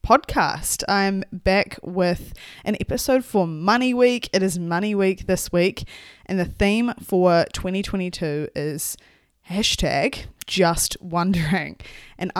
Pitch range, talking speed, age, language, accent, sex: 155-195 Hz, 120 wpm, 20-39, English, Australian, female